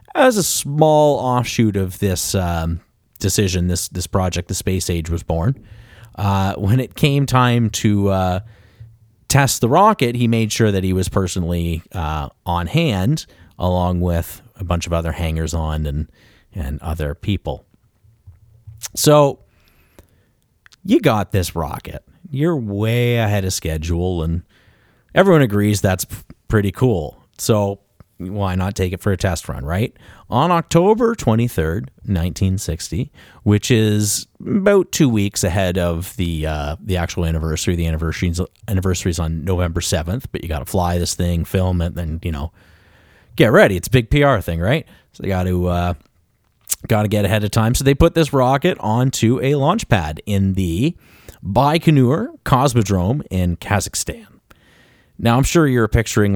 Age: 30-49